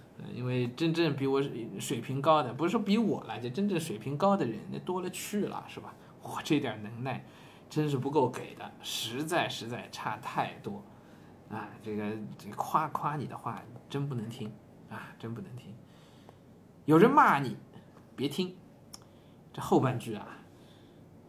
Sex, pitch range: male, 125-185 Hz